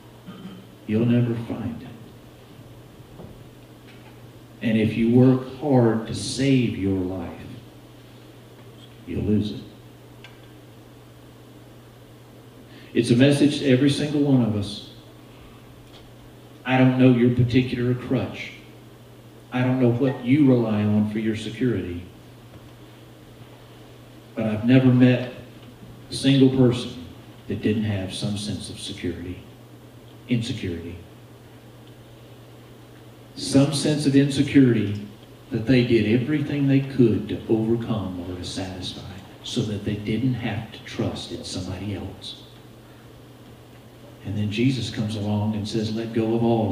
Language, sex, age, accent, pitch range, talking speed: English, male, 50-69, American, 105-130 Hz, 120 wpm